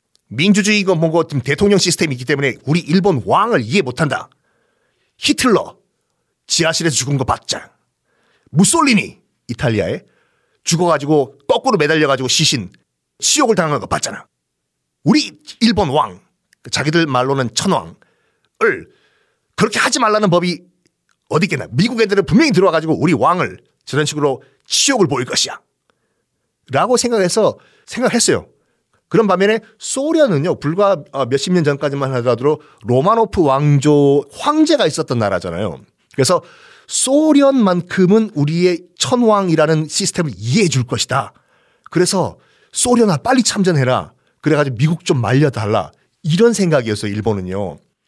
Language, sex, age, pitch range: Korean, male, 40-59, 145-220 Hz